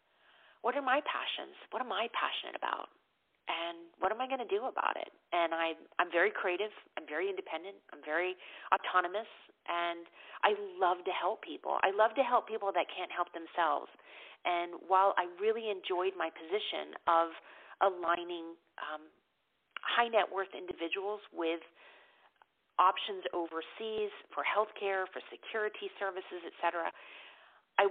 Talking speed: 145 wpm